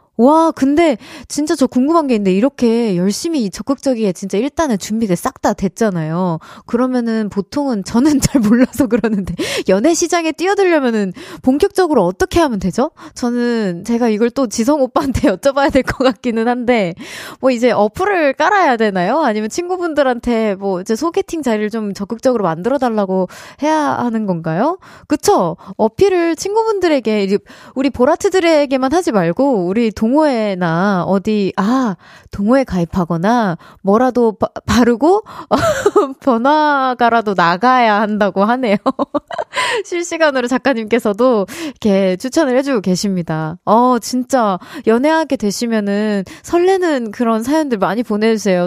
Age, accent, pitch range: 20-39, native, 210-290 Hz